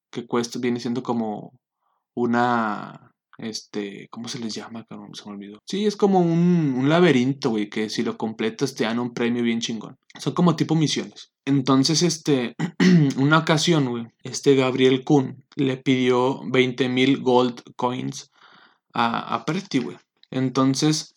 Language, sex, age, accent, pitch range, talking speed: Spanish, male, 20-39, Mexican, 120-140 Hz, 155 wpm